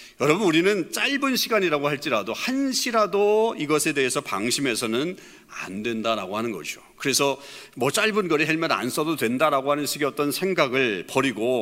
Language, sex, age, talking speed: English, male, 40-59, 135 wpm